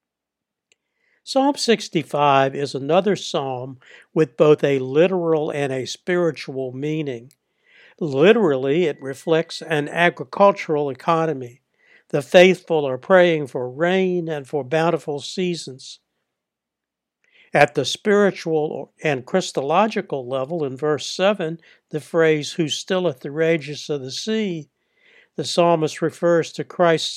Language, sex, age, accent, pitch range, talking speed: English, male, 60-79, American, 140-180 Hz, 115 wpm